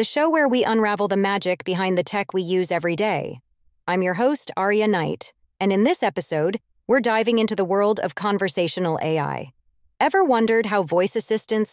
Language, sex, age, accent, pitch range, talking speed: English, female, 30-49, American, 155-205 Hz, 185 wpm